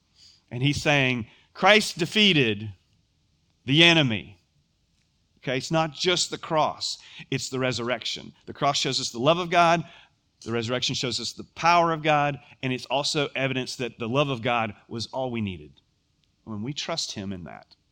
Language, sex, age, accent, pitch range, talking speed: English, male, 40-59, American, 105-145 Hz, 170 wpm